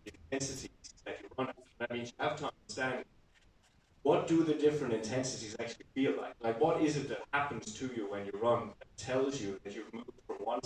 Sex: male